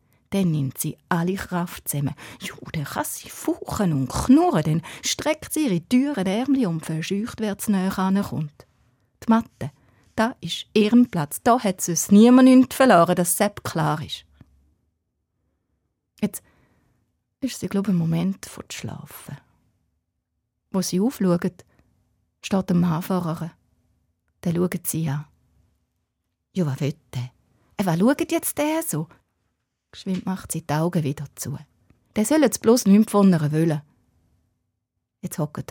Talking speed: 150 wpm